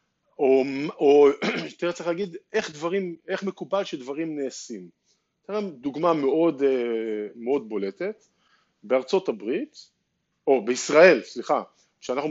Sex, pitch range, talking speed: male, 135-205 Hz, 95 wpm